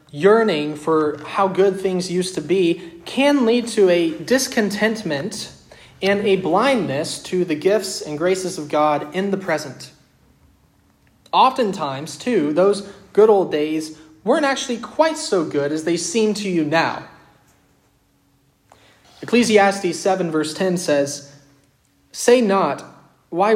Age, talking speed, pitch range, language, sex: 20-39, 130 wpm, 145-200 Hz, English, male